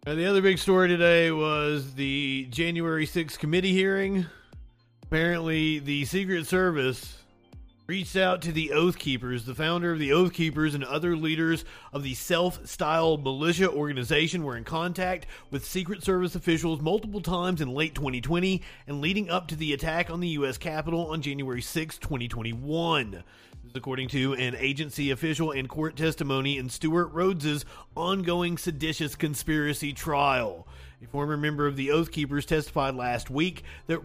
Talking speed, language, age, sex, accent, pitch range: 155 wpm, English, 30-49, male, American, 140-175 Hz